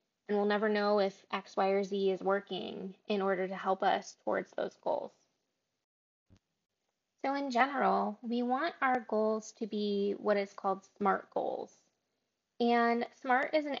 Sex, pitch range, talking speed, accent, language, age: female, 195-230 Hz, 160 wpm, American, English, 20-39